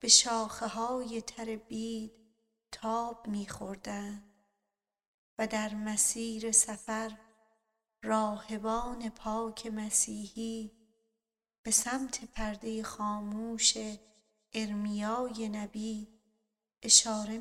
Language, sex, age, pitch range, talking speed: Persian, female, 40-59, 220-230 Hz, 70 wpm